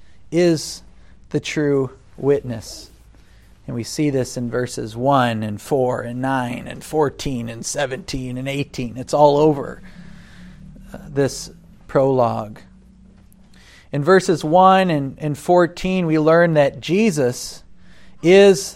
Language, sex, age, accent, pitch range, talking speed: English, male, 40-59, American, 120-155 Hz, 120 wpm